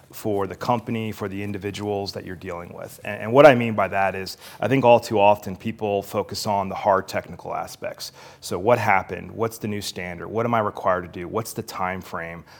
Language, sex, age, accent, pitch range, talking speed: English, male, 30-49, American, 95-110 Hz, 225 wpm